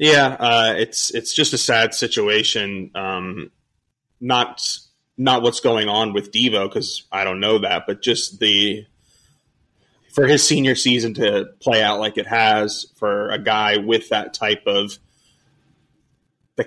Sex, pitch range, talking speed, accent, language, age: male, 100-120 Hz, 150 wpm, American, English, 20-39